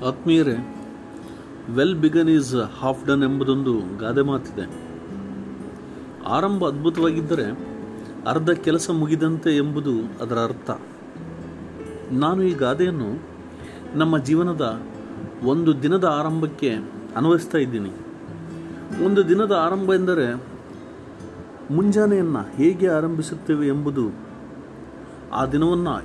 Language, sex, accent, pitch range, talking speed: Kannada, male, native, 130-170 Hz, 85 wpm